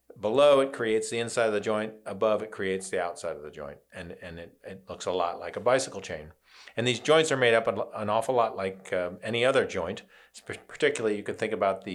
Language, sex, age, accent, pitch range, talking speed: English, male, 40-59, American, 100-150 Hz, 240 wpm